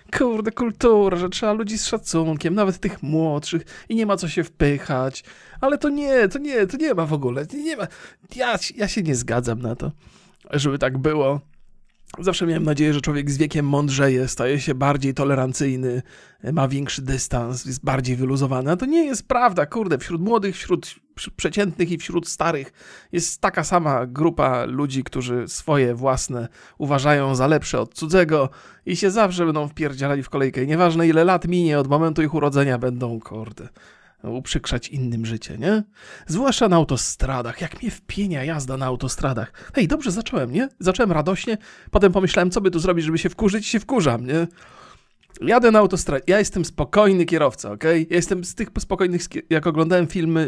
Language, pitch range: Polish, 135-190 Hz